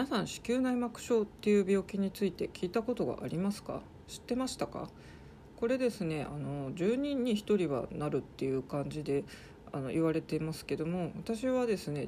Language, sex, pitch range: Japanese, female, 155-210 Hz